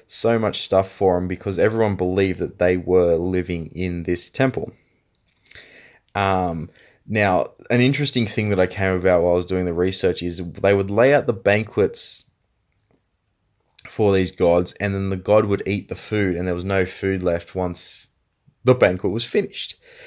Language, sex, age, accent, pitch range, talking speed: English, male, 20-39, Australian, 90-105 Hz, 175 wpm